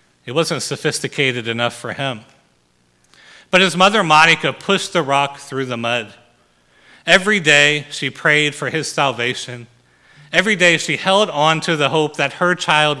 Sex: male